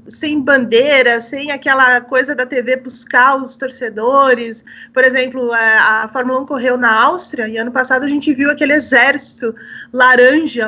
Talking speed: 150 wpm